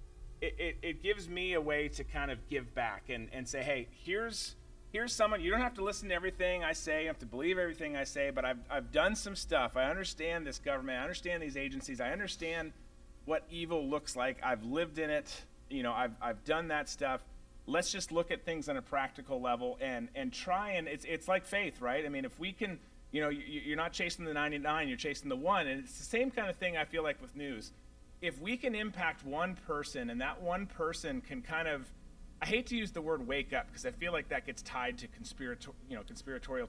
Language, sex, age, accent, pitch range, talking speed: English, male, 30-49, American, 140-200 Hz, 240 wpm